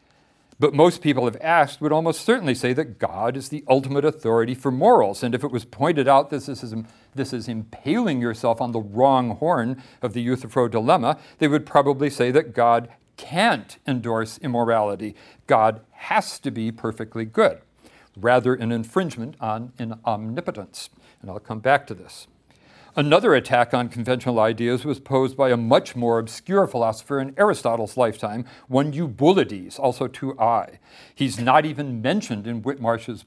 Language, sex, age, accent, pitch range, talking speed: English, male, 50-69, American, 115-140 Hz, 160 wpm